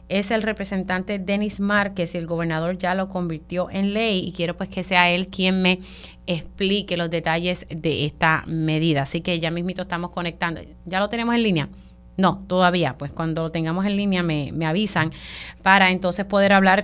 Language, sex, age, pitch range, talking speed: Spanish, female, 30-49, 170-195 Hz, 190 wpm